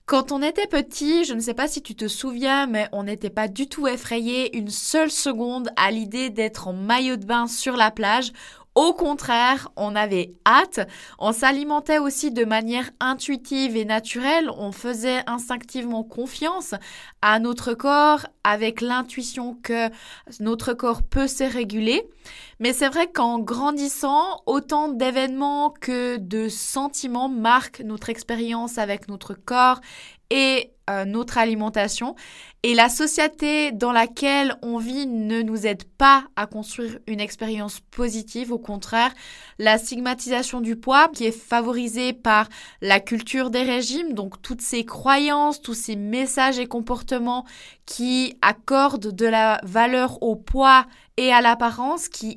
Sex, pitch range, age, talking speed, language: female, 225-270 Hz, 20-39, 150 wpm, French